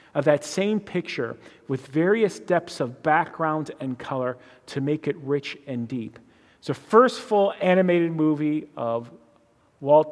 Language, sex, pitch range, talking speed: English, male, 140-180 Hz, 150 wpm